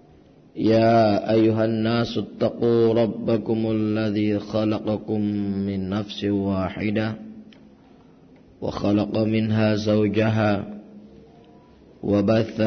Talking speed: 65 wpm